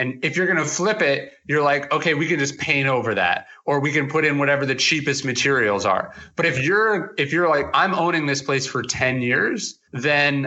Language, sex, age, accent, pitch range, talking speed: English, male, 30-49, American, 130-155 Hz, 230 wpm